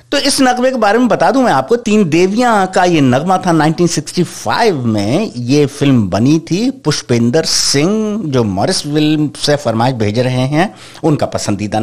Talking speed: 170 wpm